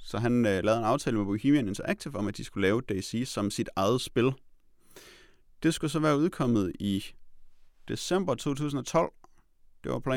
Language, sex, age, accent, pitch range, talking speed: Danish, male, 30-49, native, 100-140 Hz, 170 wpm